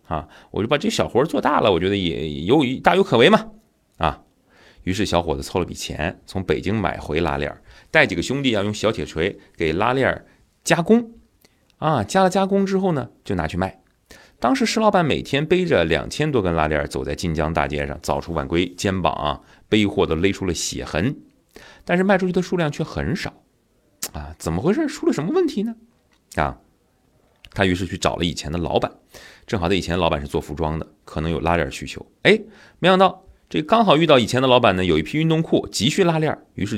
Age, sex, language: 30-49, male, Chinese